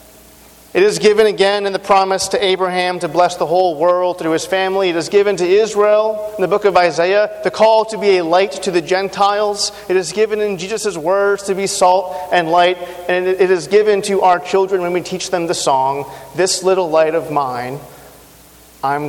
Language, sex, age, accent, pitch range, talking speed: English, male, 40-59, American, 160-195 Hz, 210 wpm